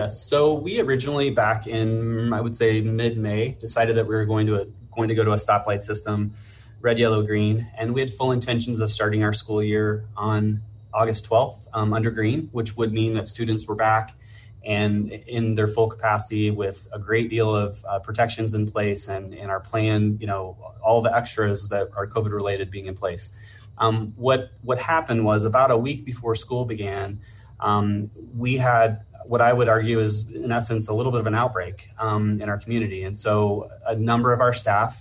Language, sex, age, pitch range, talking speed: English, male, 20-39, 105-115 Hz, 195 wpm